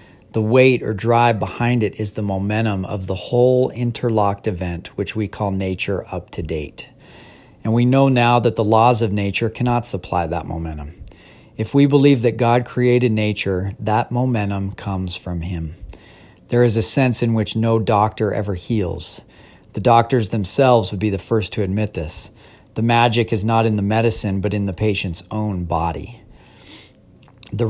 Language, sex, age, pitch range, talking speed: English, male, 40-59, 95-120 Hz, 175 wpm